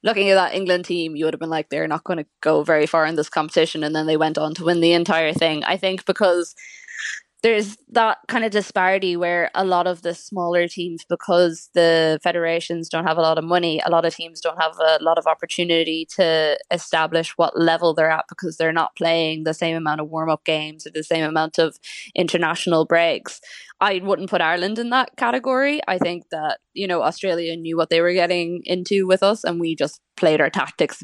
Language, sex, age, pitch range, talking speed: English, female, 20-39, 160-180 Hz, 220 wpm